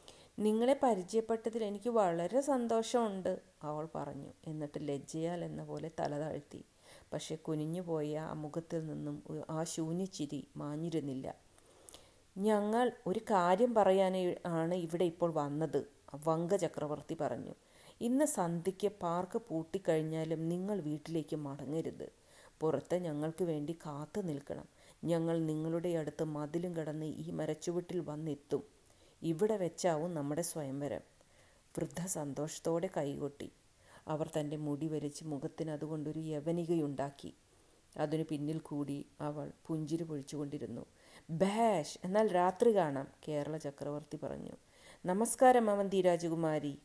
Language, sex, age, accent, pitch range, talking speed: Malayalam, female, 40-59, native, 150-185 Hz, 105 wpm